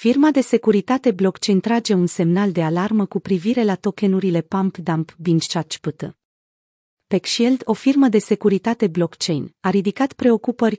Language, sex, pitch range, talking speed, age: Romanian, female, 180-225 Hz, 140 wpm, 30-49